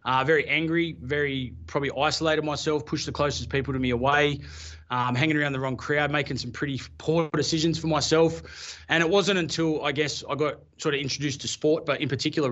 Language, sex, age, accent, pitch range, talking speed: English, male, 20-39, Australian, 130-155 Hz, 205 wpm